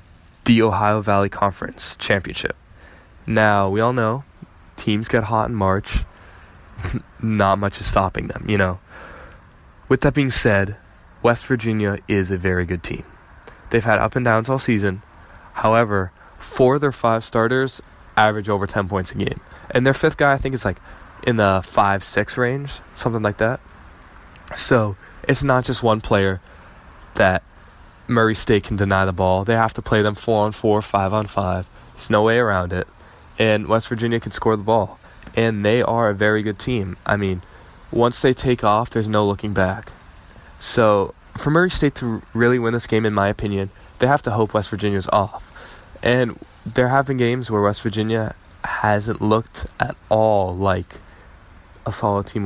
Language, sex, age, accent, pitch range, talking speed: English, male, 20-39, American, 95-115 Hz, 175 wpm